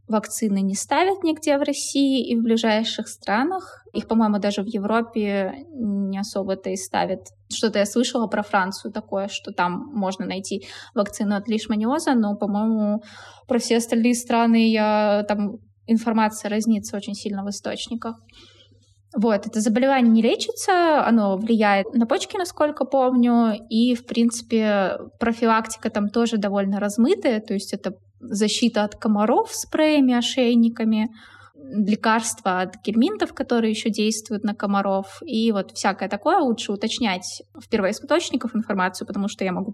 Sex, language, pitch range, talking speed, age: female, Russian, 205-240 Hz, 145 wpm, 20-39